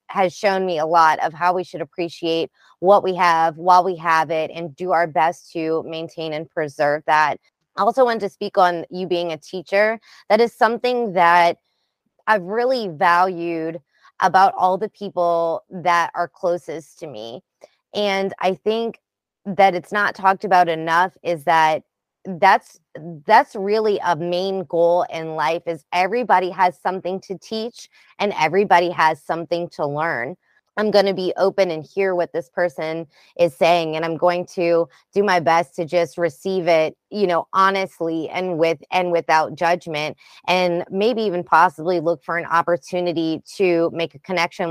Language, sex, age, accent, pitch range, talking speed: English, female, 20-39, American, 165-190 Hz, 170 wpm